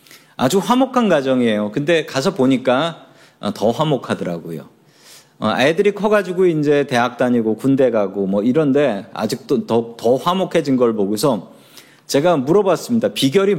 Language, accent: Korean, native